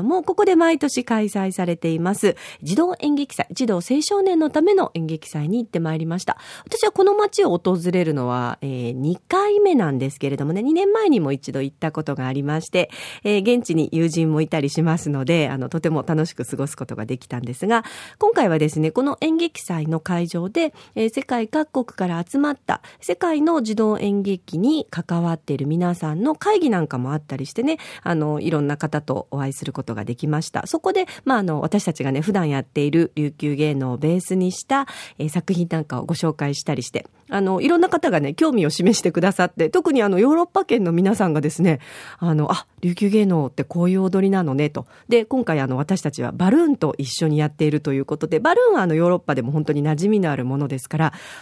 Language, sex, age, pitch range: Japanese, female, 40-59, 150-245 Hz